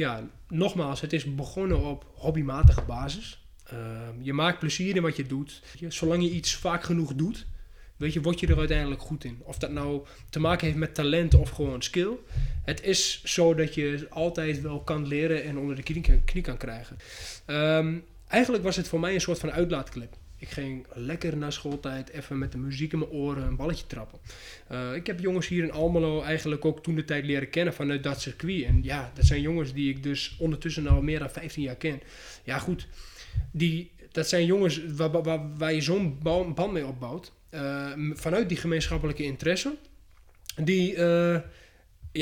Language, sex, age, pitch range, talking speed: Dutch, male, 20-39, 140-170 Hz, 190 wpm